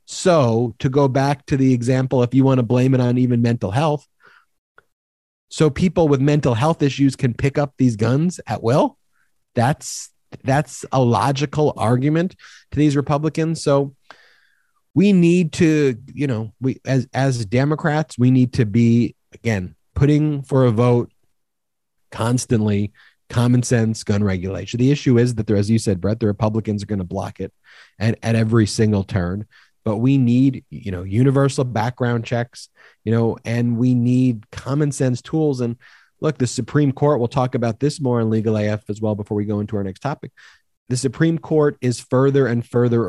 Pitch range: 110-135 Hz